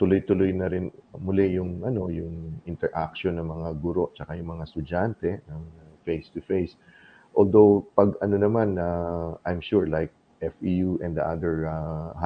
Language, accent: Filipino, native